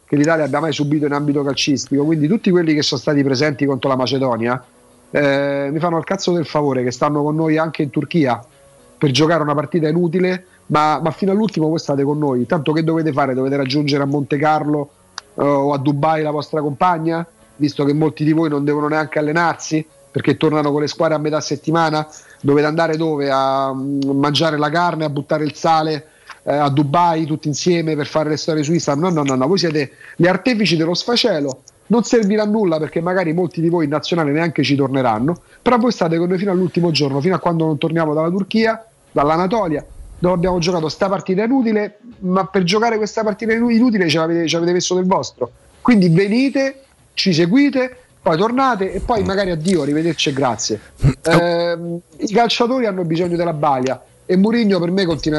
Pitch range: 150-180 Hz